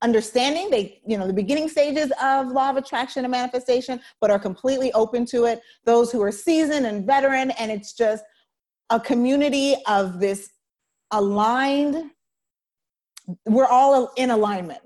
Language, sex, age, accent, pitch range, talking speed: English, female, 30-49, American, 205-265 Hz, 150 wpm